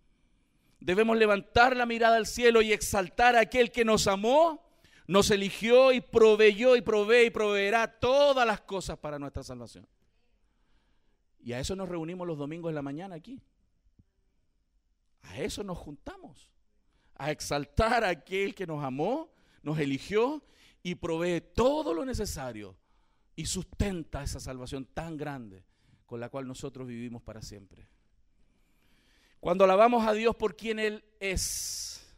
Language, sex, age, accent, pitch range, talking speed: Spanish, male, 50-69, Venezuelan, 135-210 Hz, 145 wpm